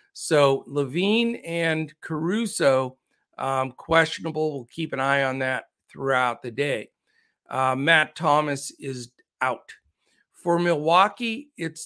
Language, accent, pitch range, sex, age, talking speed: English, American, 140-170 Hz, male, 50-69, 115 wpm